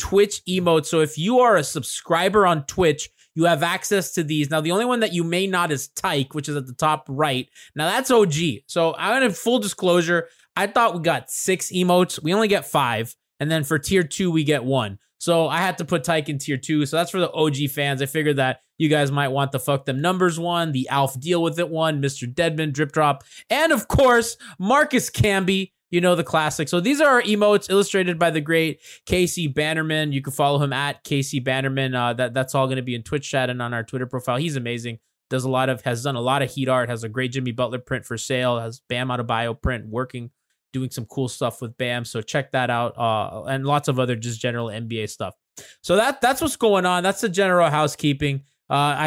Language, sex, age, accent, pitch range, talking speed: English, male, 20-39, American, 130-180 Hz, 240 wpm